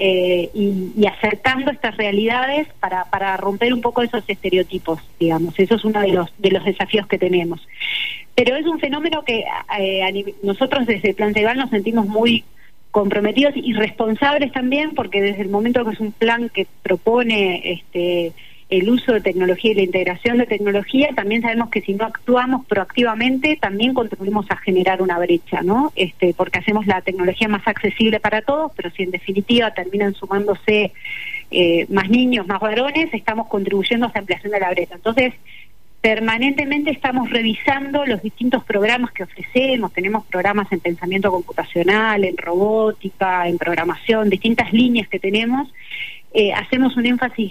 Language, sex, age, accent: Spanish, female, 30-49, Argentinian